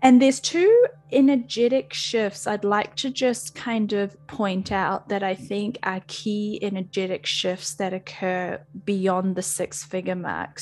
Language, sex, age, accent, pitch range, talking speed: English, female, 10-29, Australian, 170-205 Hz, 145 wpm